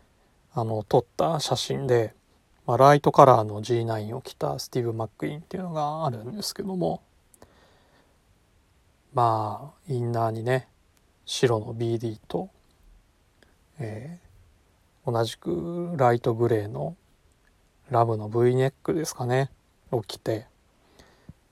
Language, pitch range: Japanese, 110-150 Hz